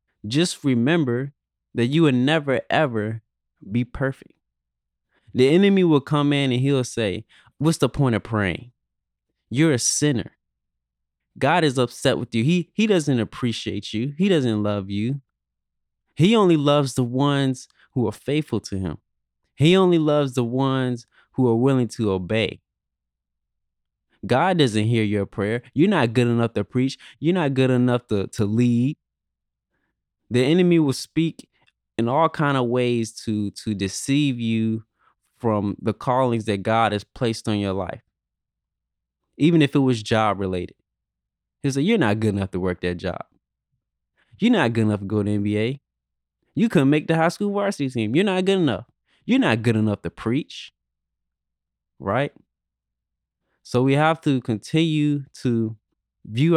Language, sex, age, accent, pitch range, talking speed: English, male, 20-39, American, 100-140 Hz, 160 wpm